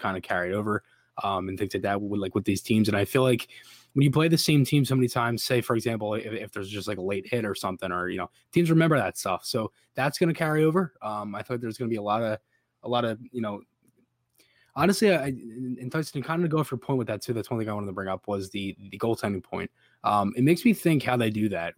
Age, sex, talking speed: 20-39, male, 285 wpm